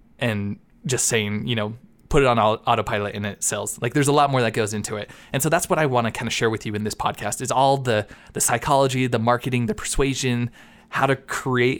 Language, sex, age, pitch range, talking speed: English, male, 20-39, 110-135 Hz, 245 wpm